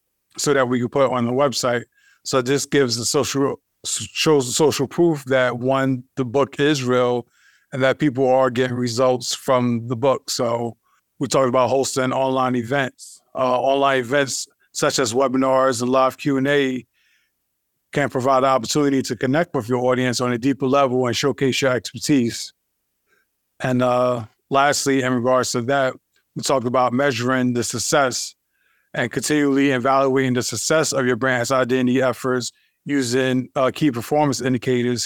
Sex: male